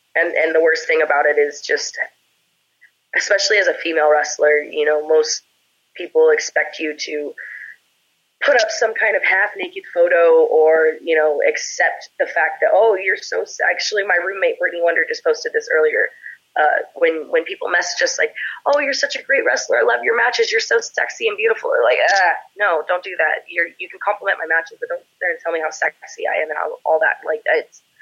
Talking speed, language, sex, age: 215 wpm, English, female, 20-39